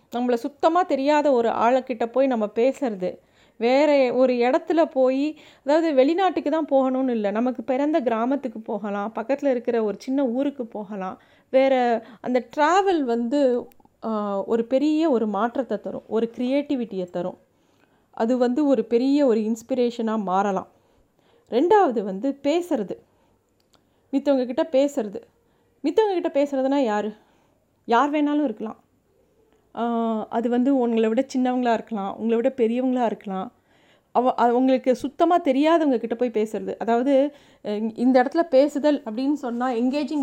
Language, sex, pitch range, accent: Tamil, female, 225-280 Hz, native